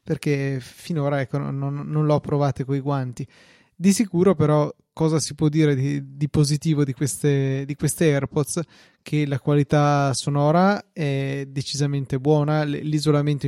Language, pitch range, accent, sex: Italian, 135-150 Hz, native, male